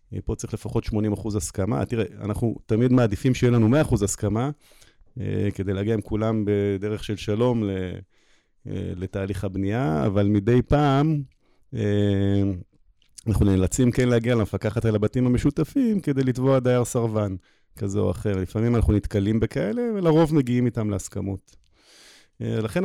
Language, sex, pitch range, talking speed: Hebrew, male, 105-125 Hz, 140 wpm